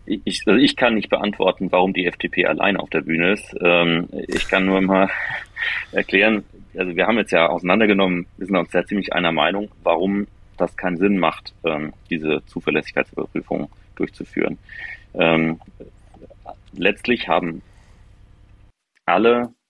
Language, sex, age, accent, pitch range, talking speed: German, male, 30-49, German, 85-100 Hz, 130 wpm